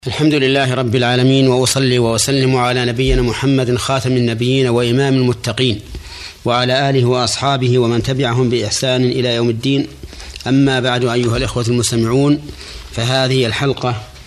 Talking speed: 120 wpm